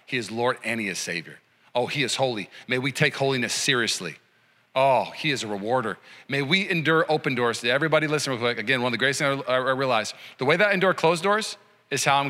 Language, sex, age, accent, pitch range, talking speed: English, male, 40-59, American, 125-150 Hz, 235 wpm